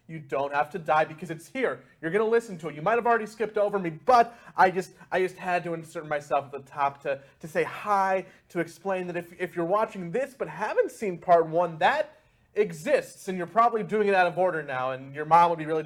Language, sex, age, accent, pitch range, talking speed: English, male, 30-49, American, 150-215 Hz, 255 wpm